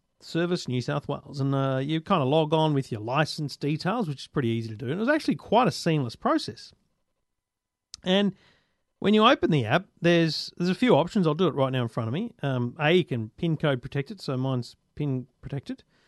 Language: English